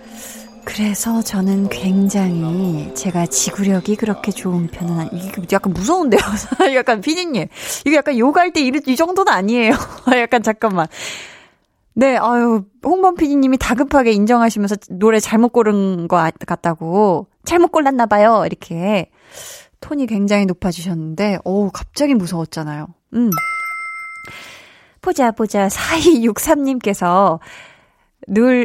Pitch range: 190-260 Hz